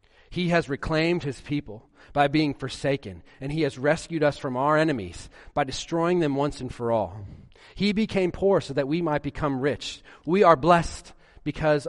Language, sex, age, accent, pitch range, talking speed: English, male, 40-59, American, 105-155 Hz, 180 wpm